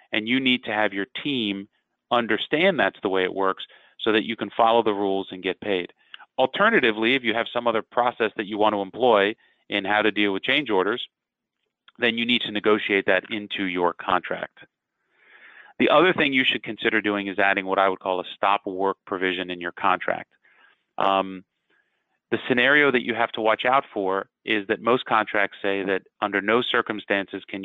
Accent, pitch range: American, 100-115 Hz